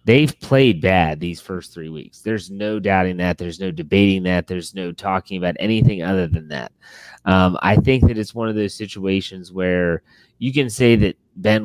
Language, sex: English, male